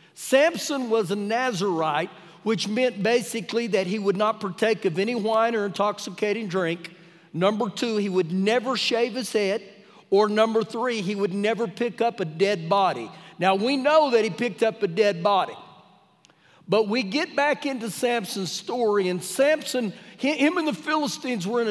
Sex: male